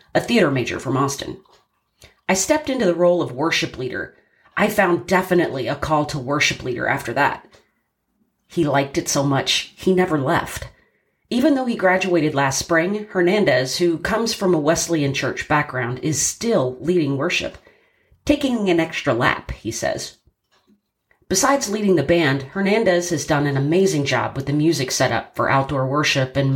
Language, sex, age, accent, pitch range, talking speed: English, female, 40-59, American, 145-190 Hz, 165 wpm